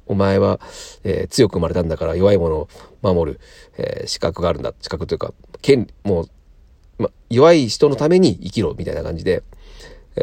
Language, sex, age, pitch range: Japanese, male, 40-59, 85-120 Hz